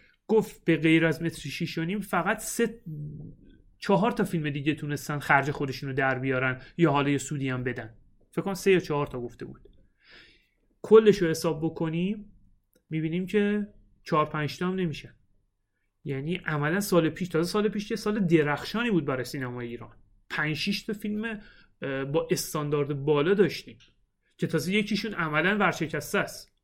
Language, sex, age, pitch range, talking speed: Persian, male, 30-49, 135-190 Hz, 145 wpm